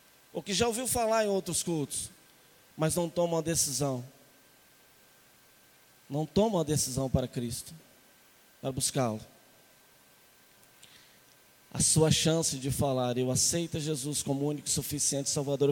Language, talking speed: Portuguese, 130 wpm